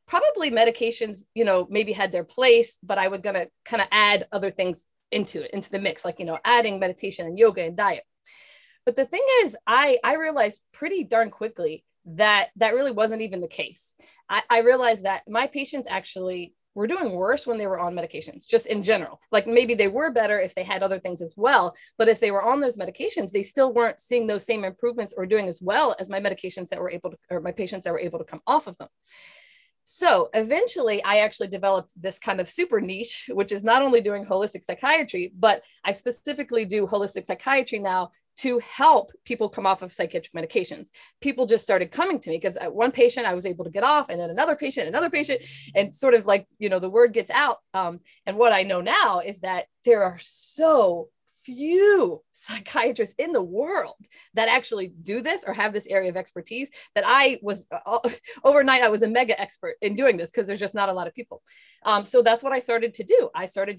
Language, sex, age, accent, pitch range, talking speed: English, female, 30-49, American, 195-270 Hz, 220 wpm